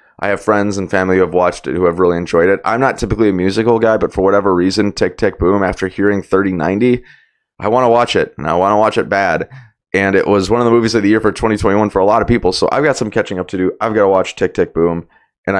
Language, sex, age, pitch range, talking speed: English, male, 20-39, 90-115 Hz, 290 wpm